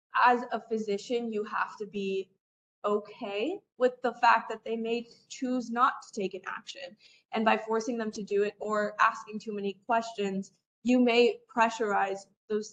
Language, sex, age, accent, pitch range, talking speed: English, female, 20-39, American, 200-240 Hz, 170 wpm